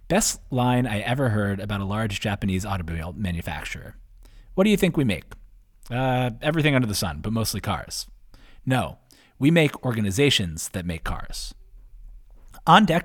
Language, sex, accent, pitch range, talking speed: English, male, American, 105-135 Hz, 150 wpm